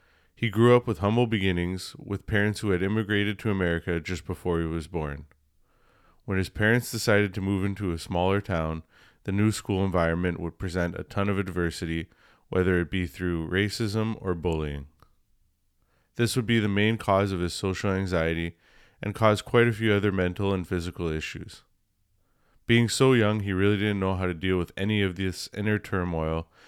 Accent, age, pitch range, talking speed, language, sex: American, 20-39, 90-105 Hz, 180 wpm, English, male